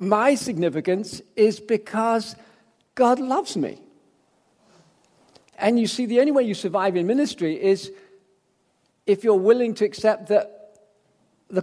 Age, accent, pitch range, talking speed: 50-69, British, 180-235 Hz, 130 wpm